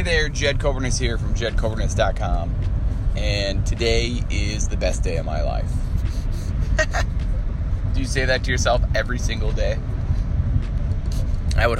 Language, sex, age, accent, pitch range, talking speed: English, male, 20-39, American, 90-115 Hz, 135 wpm